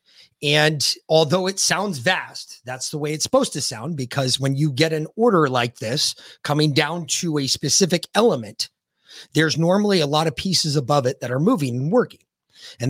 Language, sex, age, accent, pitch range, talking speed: English, male, 30-49, American, 135-190 Hz, 185 wpm